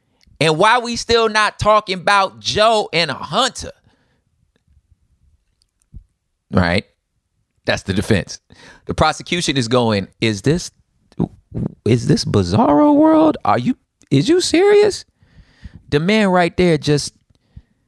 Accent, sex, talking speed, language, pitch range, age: American, male, 120 wpm, English, 125-195 Hz, 30-49